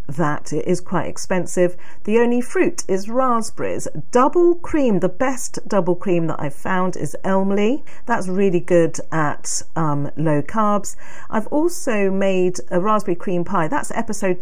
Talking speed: 155 wpm